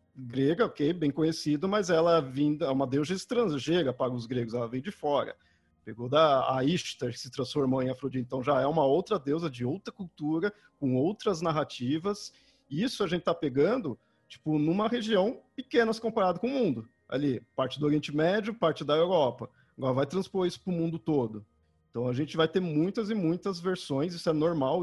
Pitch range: 140-190 Hz